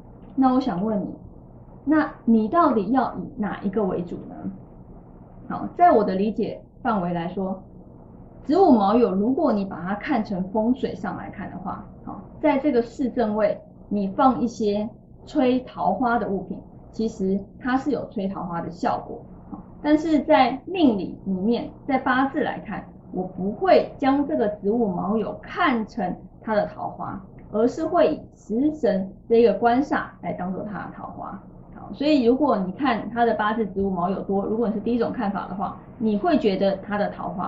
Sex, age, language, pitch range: female, 20-39, Chinese, 195-255 Hz